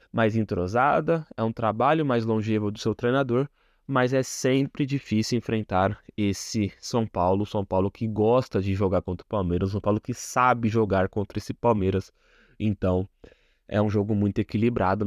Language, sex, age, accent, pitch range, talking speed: Portuguese, male, 20-39, Brazilian, 100-125 Hz, 165 wpm